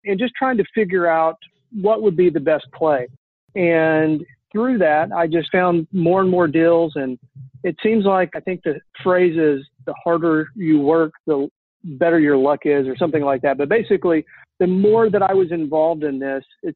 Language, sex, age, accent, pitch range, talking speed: English, male, 40-59, American, 150-180 Hz, 195 wpm